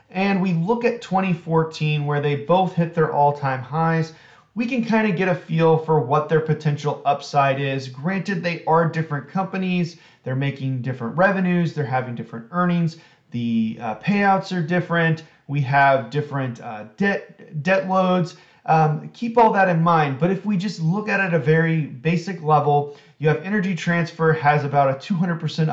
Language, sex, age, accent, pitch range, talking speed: English, male, 30-49, American, 145-180 Hz, 180 wpm